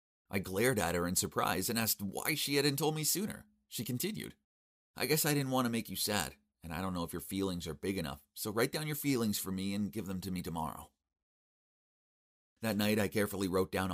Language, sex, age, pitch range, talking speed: English, male, 30-49, 85-115 Hz, 235 wpm